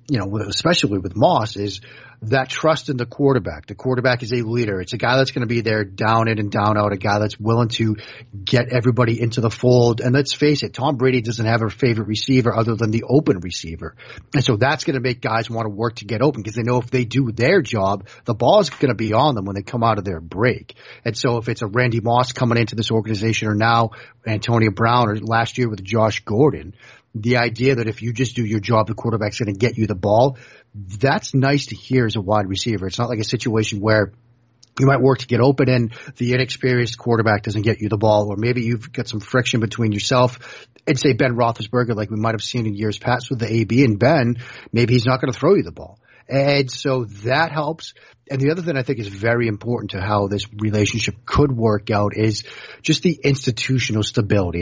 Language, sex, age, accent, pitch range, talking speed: English, male, 40-59, American, 110-130 Hz, 240 wpm